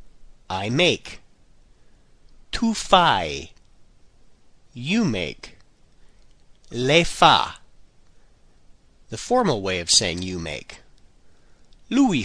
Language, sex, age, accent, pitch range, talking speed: Italian, male, 40-59, American, 110-180 Hz, 80 wpm